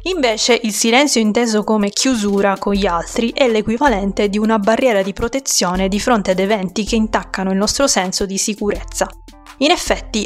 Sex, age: female, 20-39